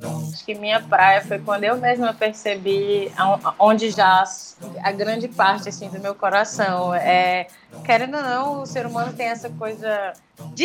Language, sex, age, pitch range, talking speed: Portuguese, female, 20-39, 195-245 Hz, 165 wpm